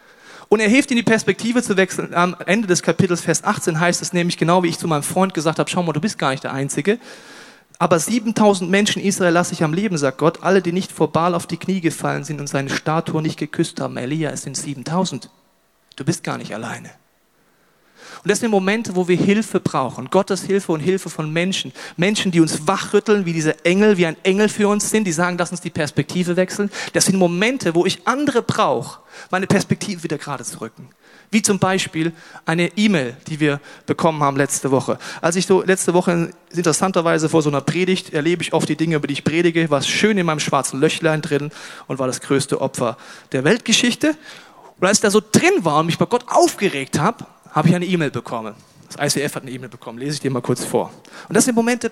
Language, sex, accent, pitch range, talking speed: German, male, German, 160-200 Hz, 225 wpm